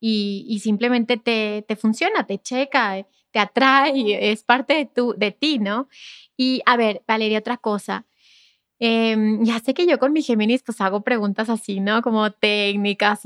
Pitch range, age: 215-250 Hz, 20-39